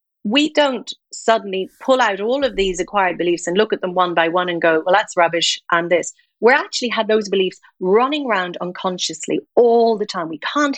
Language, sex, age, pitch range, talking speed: English, female, 40-59, 180-245 Hz, 205 wpm